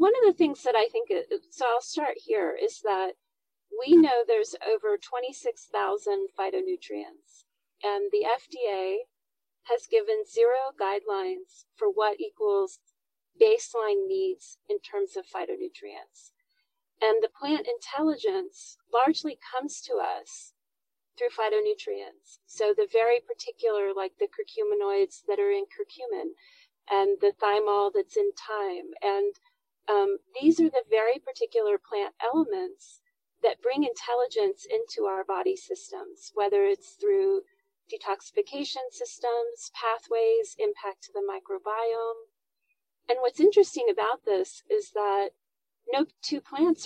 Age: 40-59